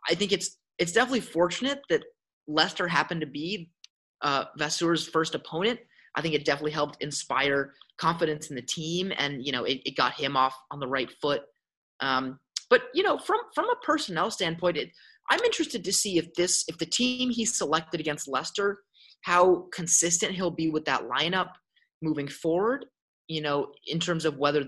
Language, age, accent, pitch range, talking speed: English, 30-49, American, 145-200 Hz, 180 wpm